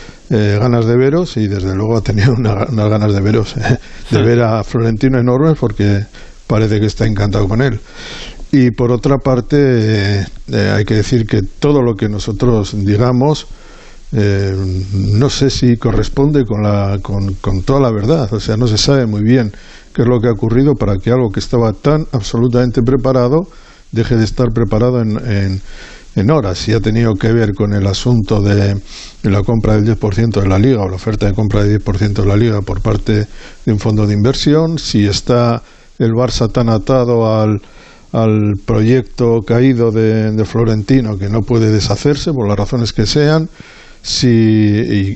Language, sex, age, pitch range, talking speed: Spanish, male, 60-79, 105-125 Hz, 180 wpm